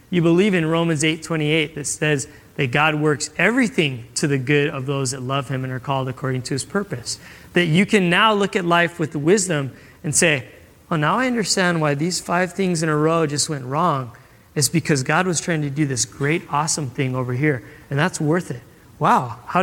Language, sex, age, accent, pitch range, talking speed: English, male, 30-49, American, 140-190 Hz, 215 wpm